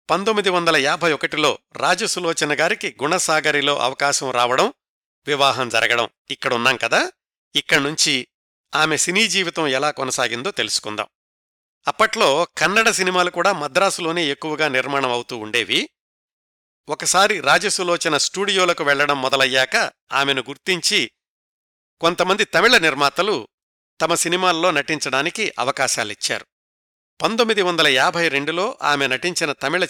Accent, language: native, Telugu